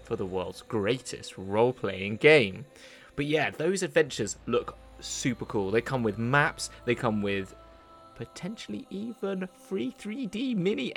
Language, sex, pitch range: English, male, 110-145 Hz